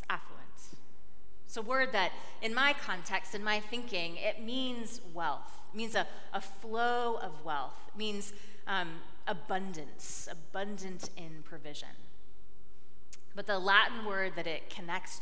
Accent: American